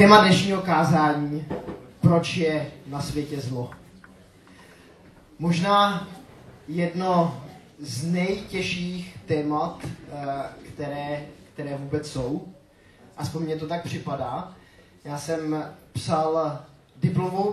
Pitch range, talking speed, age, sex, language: 135-165 Hz, 90 wpm, 20-39, male, Czech